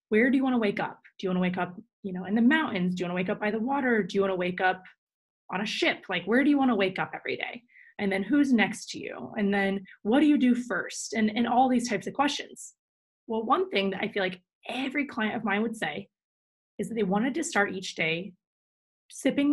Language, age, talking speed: English, 20-39, 255 wpm